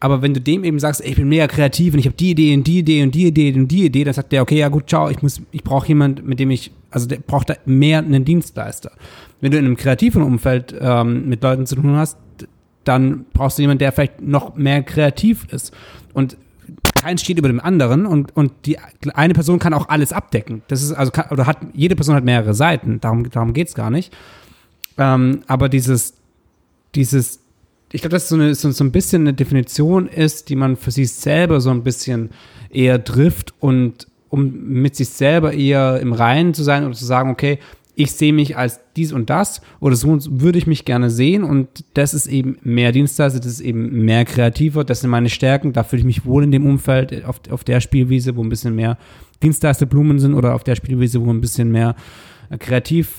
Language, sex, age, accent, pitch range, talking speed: German, male, 30-49, German, 125-150 Hz, 220 wpm